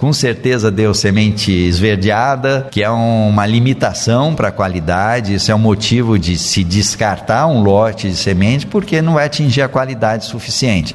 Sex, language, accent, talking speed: male, Portuguese, Brazilian, 170 wpm